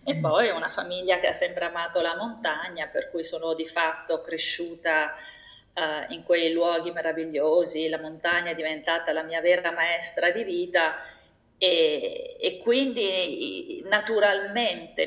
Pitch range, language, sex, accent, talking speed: 165-240 Hz, Italian, female, native, 135 wpm